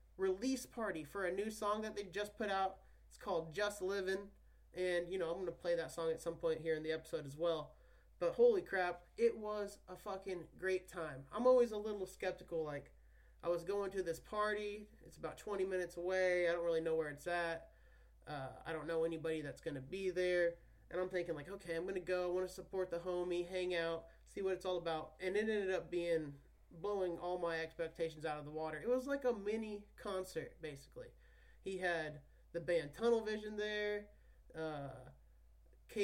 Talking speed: 205 wpm